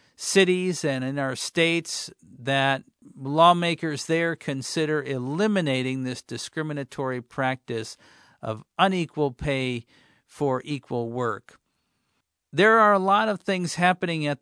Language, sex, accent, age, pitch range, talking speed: English, male, American, 50-69, 125-155 Hz, 110 wpm